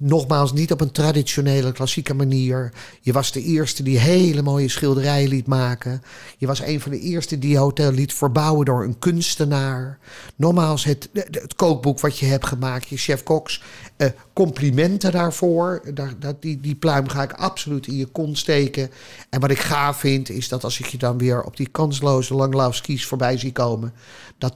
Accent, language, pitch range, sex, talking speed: Dutch, Dutch, 130-150 Hz, male, 190 wpm